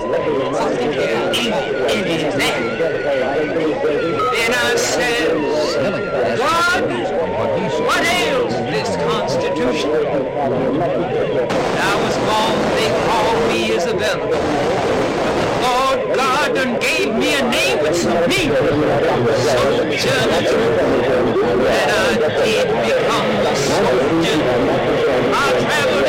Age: 60-79